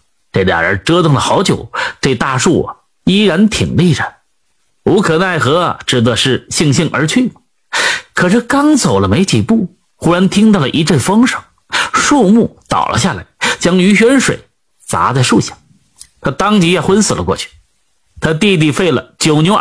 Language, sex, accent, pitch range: Chinese, male, native, 140-215 Hz